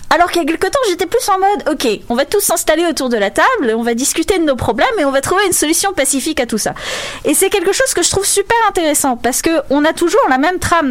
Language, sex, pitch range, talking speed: French, female, 265-360 Hz, 285 wpm